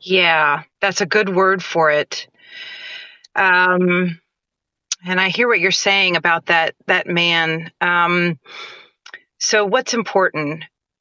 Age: 30-49